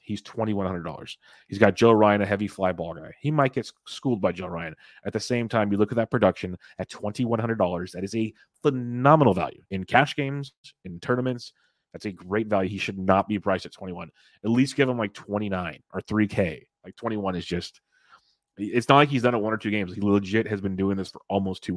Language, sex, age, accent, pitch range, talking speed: English, male, 30-49, American, 95-115 Hz, 250 wpm